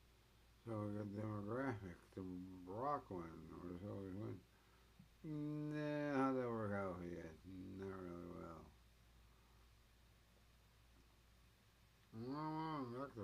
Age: 60-79